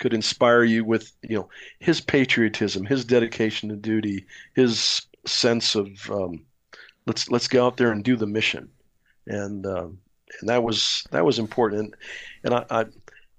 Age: 50-69